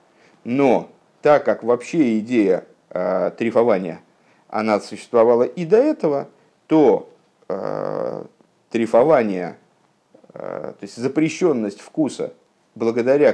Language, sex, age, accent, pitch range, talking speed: Russian, male, 50-69, native, 105-180 Hz, 95 wpm